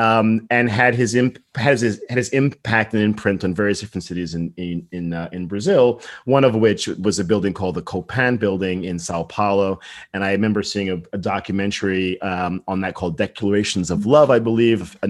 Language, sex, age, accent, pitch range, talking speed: English, male, 40-59, American, 95-125 Hz, 205 wpm